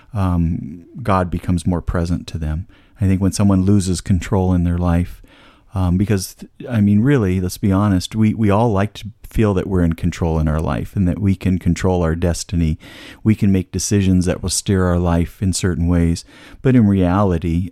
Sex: male